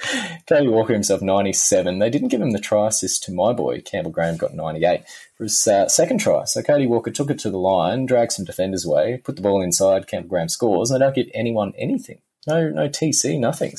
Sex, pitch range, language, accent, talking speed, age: male, 95-115 Hz, English, Australian, 220 wpm, 20-39